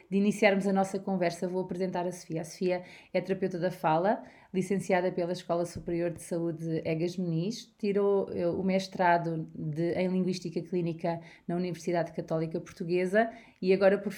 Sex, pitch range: female, 175-195 Hz